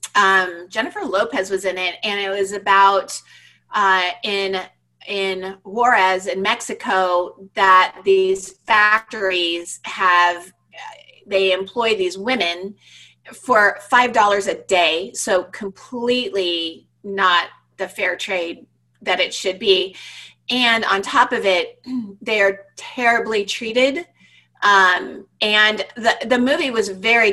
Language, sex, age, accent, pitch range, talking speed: English, female, 30-49, American, 195-260 Hz, 120 wpm